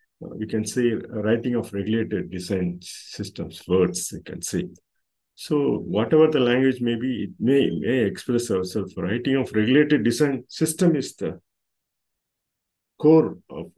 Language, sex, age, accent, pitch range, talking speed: Tamil, male, 50-69, native, 105-135 Hz, 140 wpm